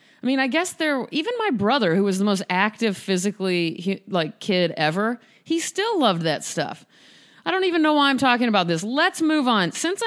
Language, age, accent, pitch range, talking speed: English, 30-49, American, 170-230 Hz, 210 wpm